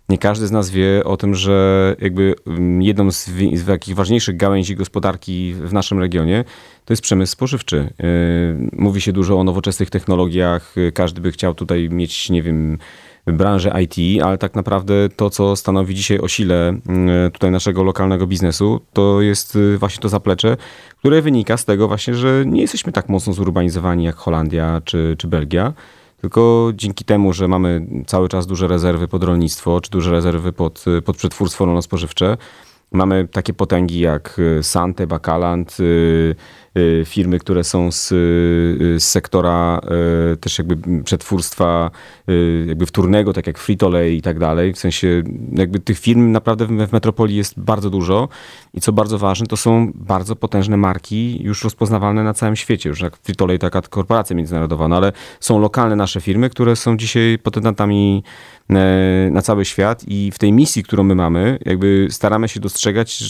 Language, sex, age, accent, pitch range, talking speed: Polish, male, 30-49, native, 85-105 Hz, 165 wpm